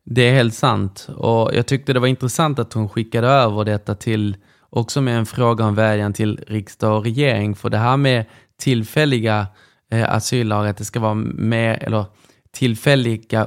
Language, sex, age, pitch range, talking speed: Swedish, male, 20-39, 105-125 Hz, 180 wpm